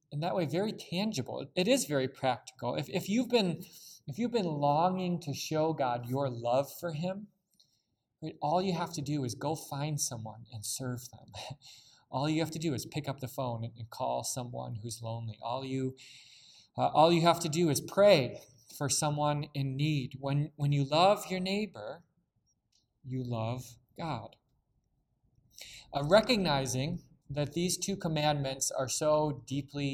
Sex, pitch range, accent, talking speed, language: male, 120-155 Hz, American, 165 wpm, English